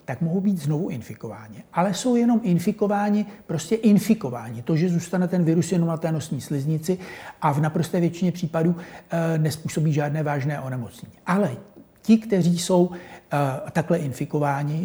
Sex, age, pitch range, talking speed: male, 60-79, 145-180 Hz, 155 wpm